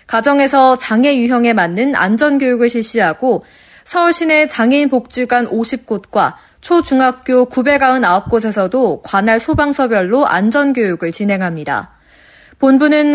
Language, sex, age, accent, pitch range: Korean, female, 20-39, native, 210-280 Hz